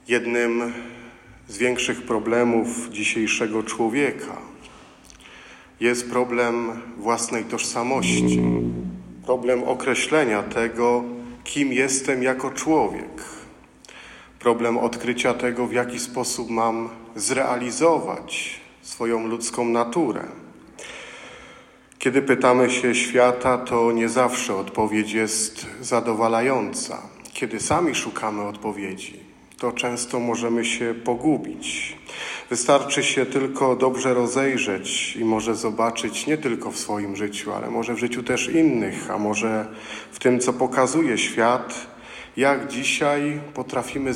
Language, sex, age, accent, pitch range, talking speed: Polish, male, 40-59, native, 115-125 Hz, 105 wpm